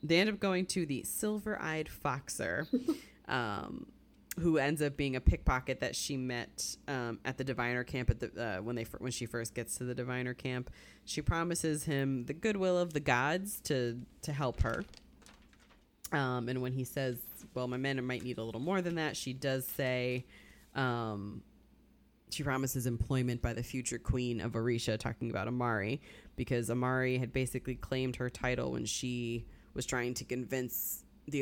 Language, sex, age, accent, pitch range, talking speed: English, female, 20-39, American, 120-135 Hz, 180 wpm